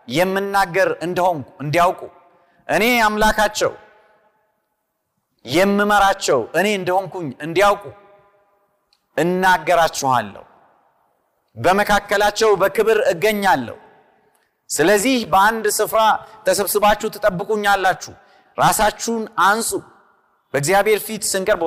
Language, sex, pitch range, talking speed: Amharic, male, 160-210 Hz, 60 wpm